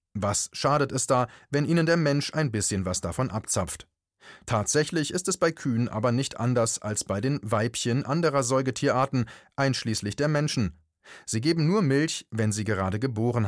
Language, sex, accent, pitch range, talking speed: German, male, German, 110-150 Hz, 170 wpm